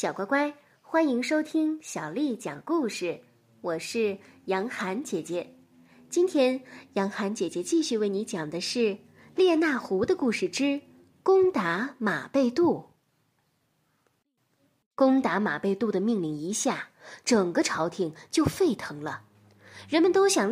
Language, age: Chinese, 20-39